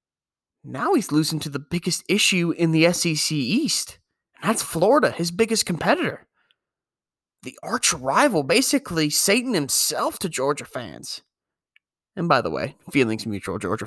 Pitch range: 145-200 Hz